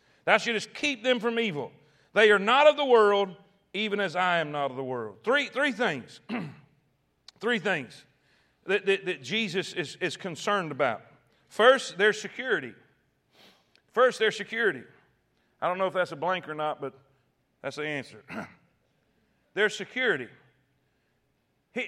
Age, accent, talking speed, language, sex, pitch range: 40-59, American, 155 wpm, English, male, 170-255 Hz